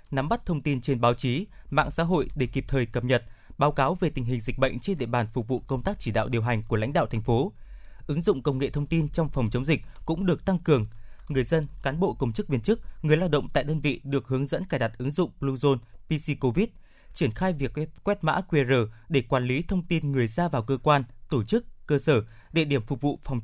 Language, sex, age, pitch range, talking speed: Vietnamese, male, 20-39, 125-165 Hz, 255 wpm